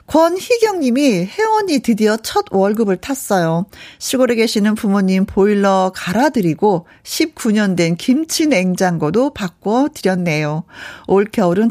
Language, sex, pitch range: Korean, female, 175-250 Hz